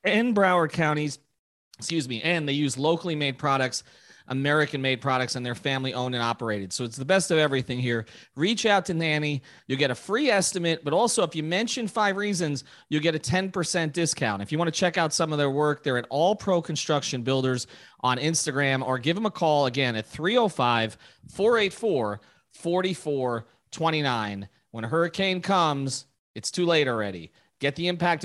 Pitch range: 120-165 Hz